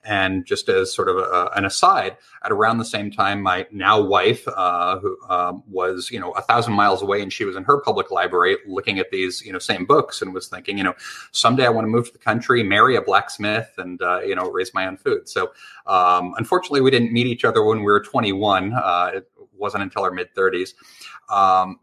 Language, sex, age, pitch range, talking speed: English, male, 30-49, 100-145 Hz, 230 wpm